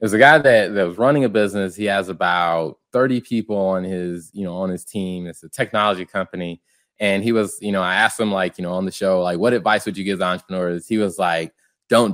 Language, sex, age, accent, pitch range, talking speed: English, male, 20-39, American, 95-125 Hz, 245 wpm